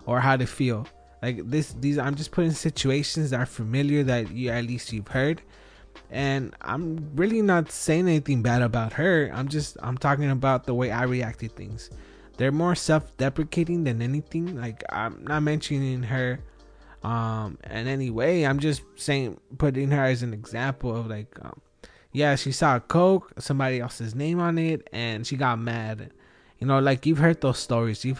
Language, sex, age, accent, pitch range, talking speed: English, male, 20-39, American, 120-145 Hz, 185 wpm